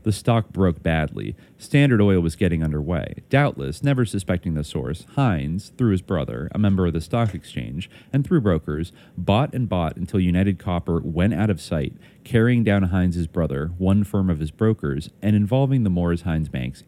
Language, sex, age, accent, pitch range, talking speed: English, male, 30-49, American, 80-105 Hz, 185 wpm